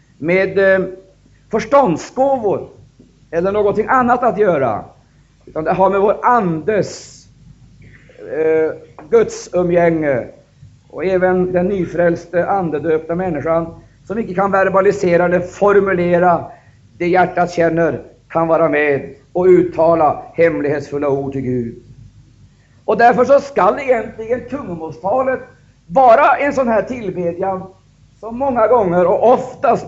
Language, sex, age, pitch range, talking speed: Swedish, male, 50-69, 165-230 Hz, 115 wpm